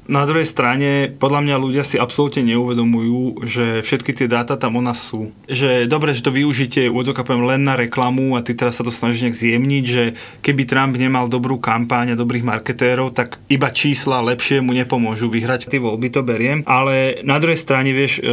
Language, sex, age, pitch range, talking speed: Slovak, male, 20-39, 125-150 Hz, 200 wpm